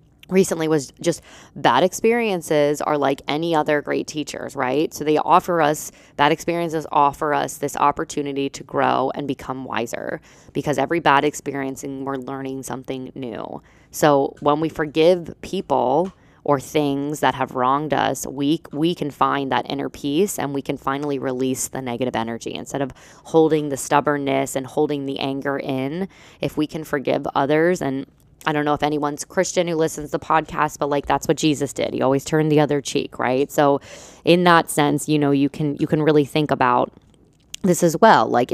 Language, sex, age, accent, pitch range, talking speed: English, female, 20-39, American, 135-155 Hz, 185 wpm